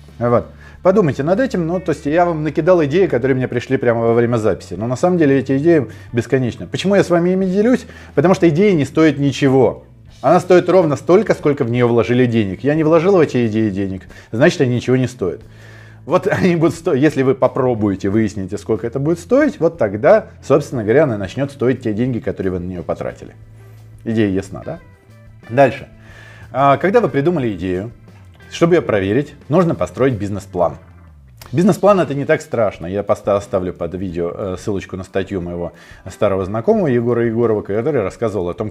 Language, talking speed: Russian, 185 wpm